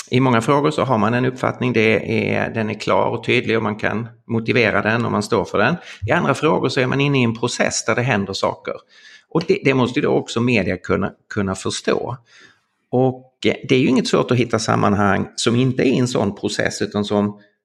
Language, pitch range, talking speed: Swedish, 105-125 Hz, 230 wpm